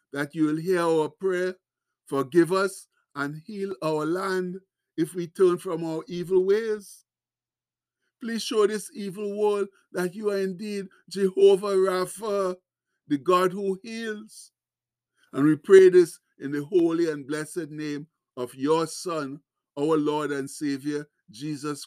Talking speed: 145 wpm